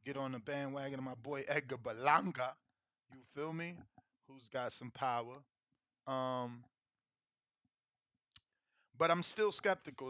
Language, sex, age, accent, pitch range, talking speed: English, male, 20-39, American, 125-155 Hz, 125 wpm